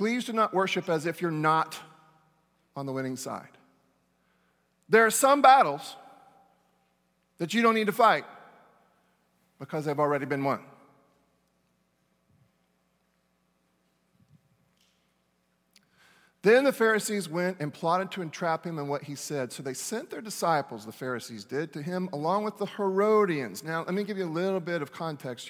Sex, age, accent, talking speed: male, 40-59, American, 150 wpm